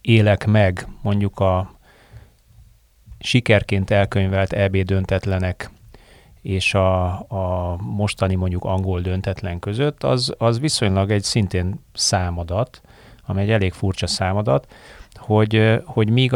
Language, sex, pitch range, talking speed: Hungarian, male, 95-110 Hz, 110 wpm